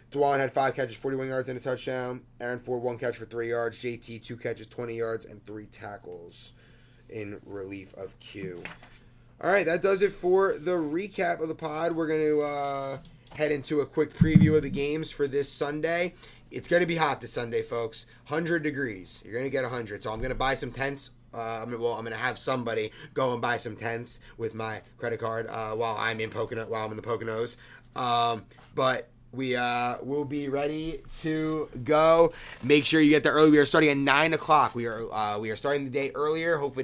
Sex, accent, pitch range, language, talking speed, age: male, American, 115-145 Hz, English, 220 wpm, 30-49